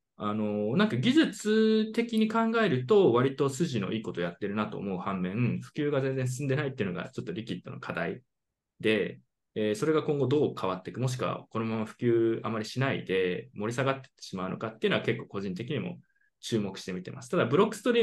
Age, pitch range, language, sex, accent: 20-39, 120-190 Hz, Japanese, male, native